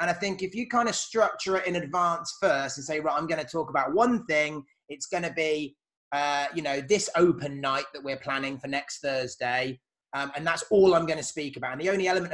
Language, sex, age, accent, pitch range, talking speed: English, male, 30-49, British, 145-190 Hz, 250 wpm